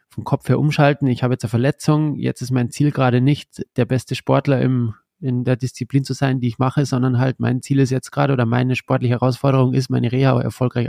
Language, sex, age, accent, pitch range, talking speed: German, male, 20-39, German, 120-135 Hz, 225 wpm